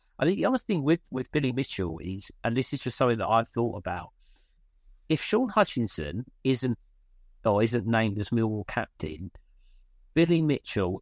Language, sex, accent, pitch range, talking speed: English, male, British, 95-125 Hz, 170 wpm